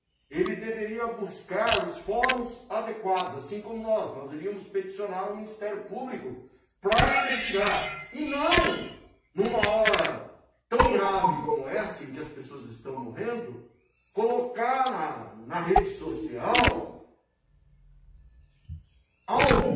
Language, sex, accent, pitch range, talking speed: Portuguese, male, Brazilian, 175-235 Hz, 110 wpm